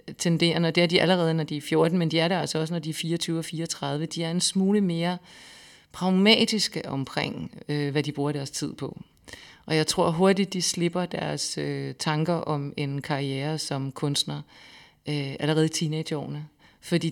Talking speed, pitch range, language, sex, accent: 180 wpm, 145-170 Hz, Danish, female, native